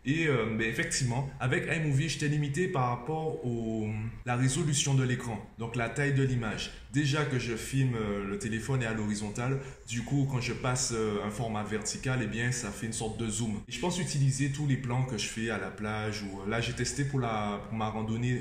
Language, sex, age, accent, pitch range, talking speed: French, male, 20-39, French, 105-130 Hz, 230 wpm